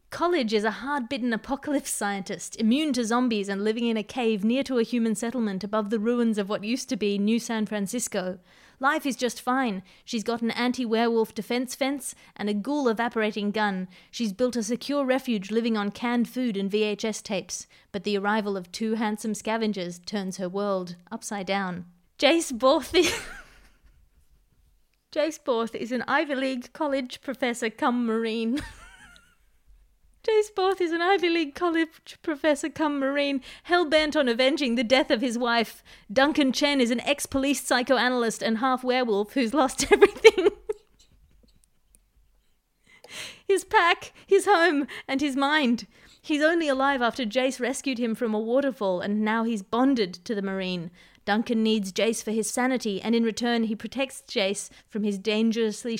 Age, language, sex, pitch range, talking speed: 30-49, English, female, 215-275 Hz, 160 wpm